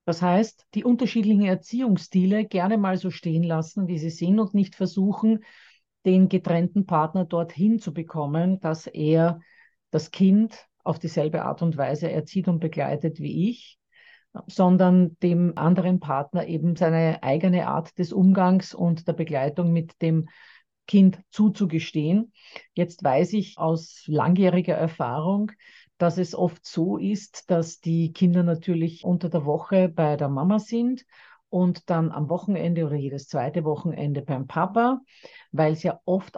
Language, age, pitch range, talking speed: German, 50-69, 160-190 Hz, 145 wpm